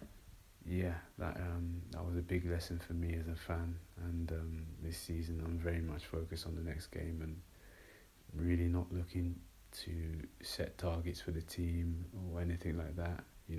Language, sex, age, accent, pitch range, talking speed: English, male, 30-49, British, 85-90 Hz, 175 wpm